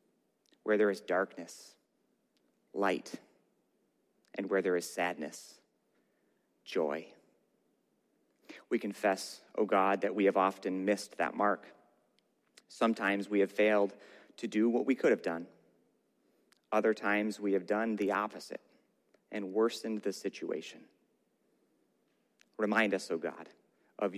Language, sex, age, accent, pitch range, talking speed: English, male, 30-49, American, 100-115 Hz, 120 wpm